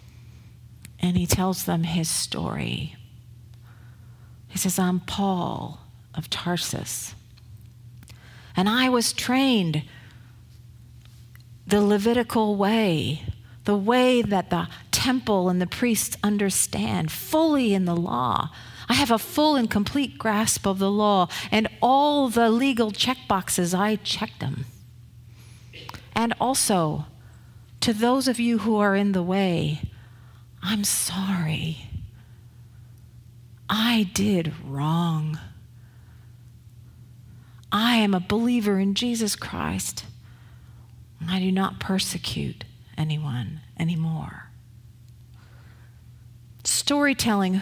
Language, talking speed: English, 100 wpm